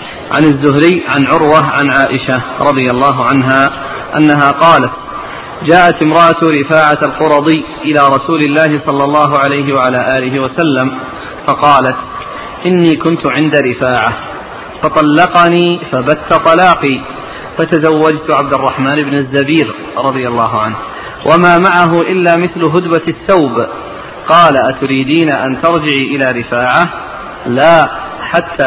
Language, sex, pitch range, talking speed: Arabic, male, 135-160 Hz, 115 wpm